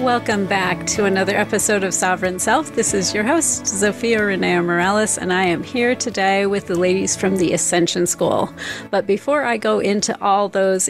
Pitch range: 180-220 Hz